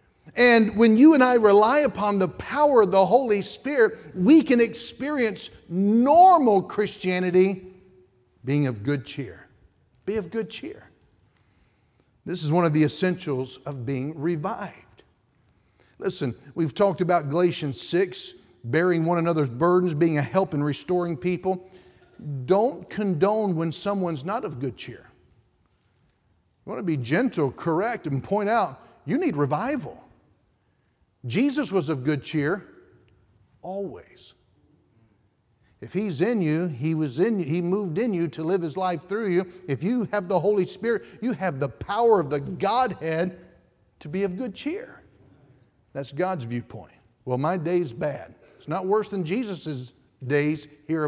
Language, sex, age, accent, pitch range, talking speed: English, male, 50-69, American, 145-205 Hz, 150 wpm